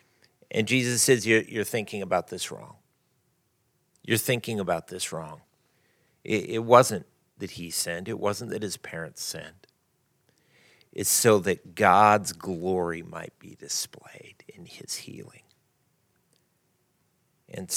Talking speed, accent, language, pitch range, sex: 130 wpm, American, English, 100-125 Hz, male